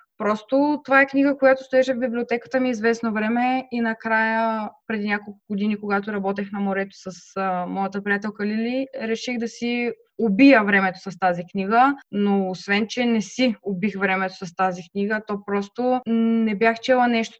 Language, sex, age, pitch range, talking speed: Bulgarian, female, 20-39, 195-235 Hz, 165 wpm